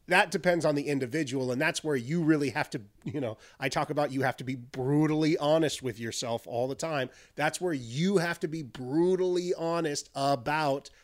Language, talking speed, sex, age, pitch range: English, 200 wpm, male, 30-49, 135-170 Hz